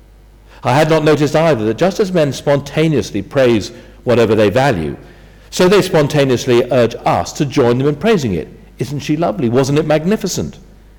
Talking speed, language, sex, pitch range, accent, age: 170 wpm, English, male, 110-150 Hz, British, 50-69